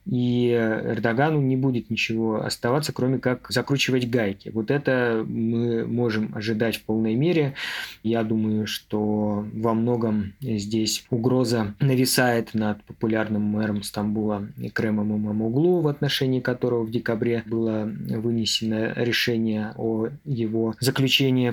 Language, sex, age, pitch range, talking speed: Russian, male, 20-39, 110-125 Hz, 125 wpm